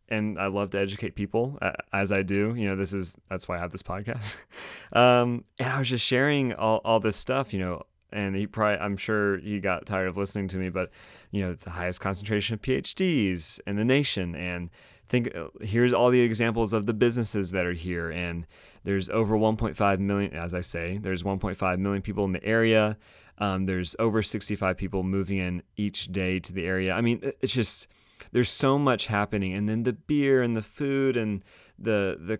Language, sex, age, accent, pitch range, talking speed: English, male, 30-49, American, 95-115 Hz, 205 wpm